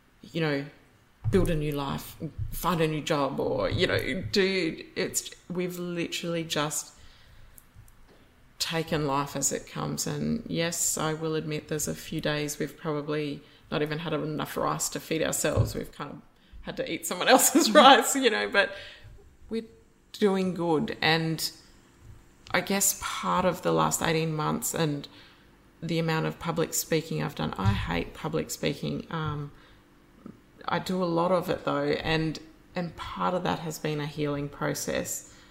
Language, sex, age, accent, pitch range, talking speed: English, female, 20-39, Australian, 145-165 Hz, 160 wpm